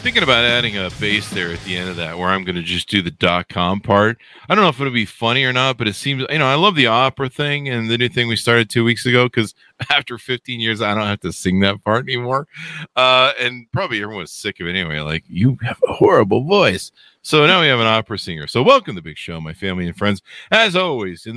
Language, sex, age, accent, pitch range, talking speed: English, male, 50-69, American, 100-135 Hz, 265 wpm